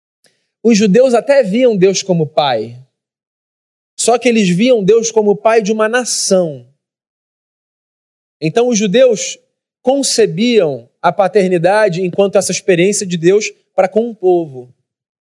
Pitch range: 180-230 Hz